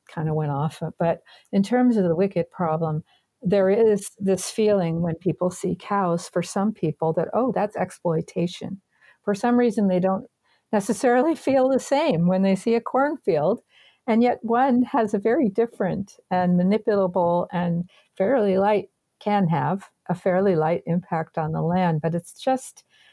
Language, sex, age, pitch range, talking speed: English, female, 50-69, 165-200 Hz, 165 wpm